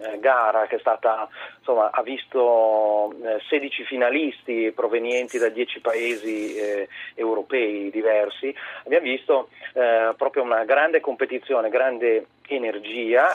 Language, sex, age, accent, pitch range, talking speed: Italian, male, 40-59, native, 110-145 Hz, 115 wpm